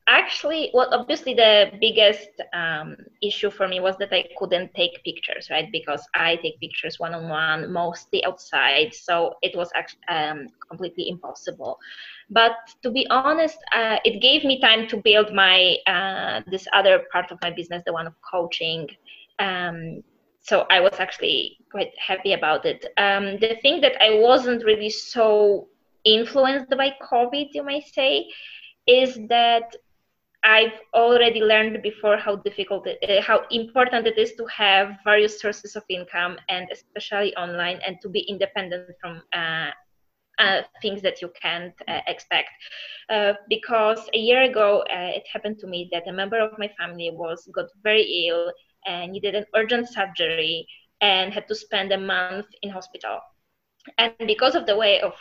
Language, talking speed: English, 165 wpm